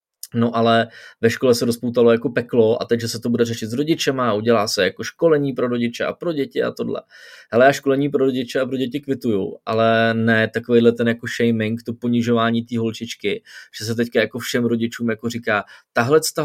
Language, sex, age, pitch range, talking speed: Czech, male, 20-39, 115-140 Hz, 210 wpm